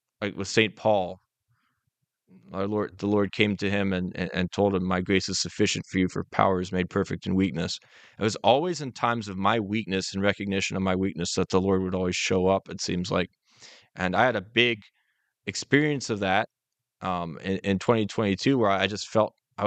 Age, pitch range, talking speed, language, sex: 20-39, 95-115 Hz, 210 wpm, English, male